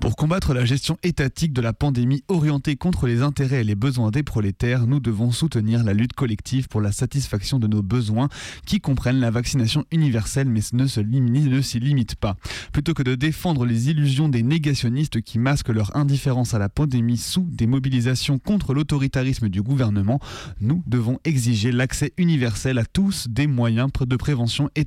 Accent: French